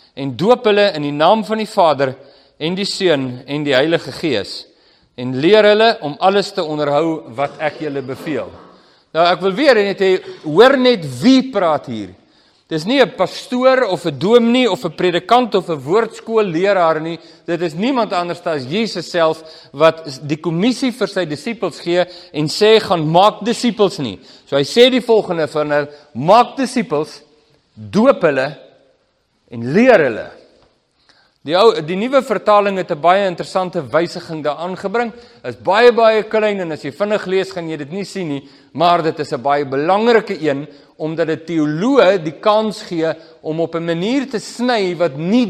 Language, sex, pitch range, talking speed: English, male, 150-215 Hz, 180 wpm